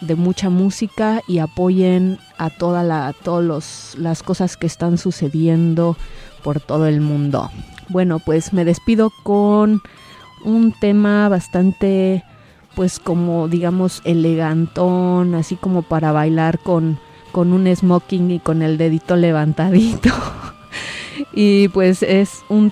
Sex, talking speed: female, 125 wpm